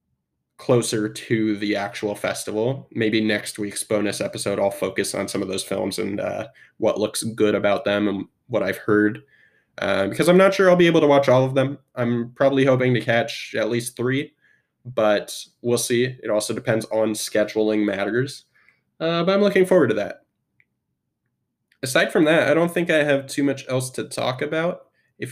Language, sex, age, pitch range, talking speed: English, male, 20-39, 110-135 Hz, 190 wpm